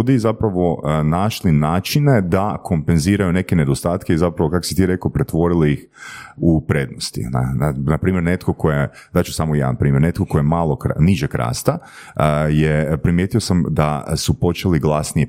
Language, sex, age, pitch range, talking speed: Croatian, male, 30-49, 80-105 Hz, 165 wpm